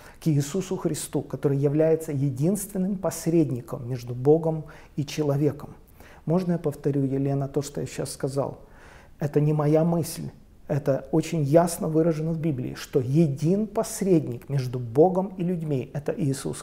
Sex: male